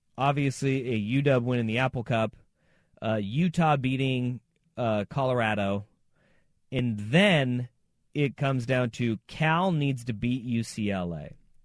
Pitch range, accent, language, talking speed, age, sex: 115-145 Hz, American, English, 125 wpm, 30-49, male